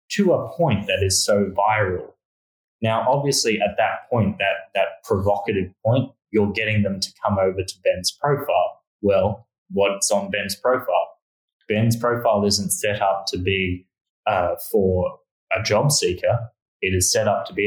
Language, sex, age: English, male, 20-39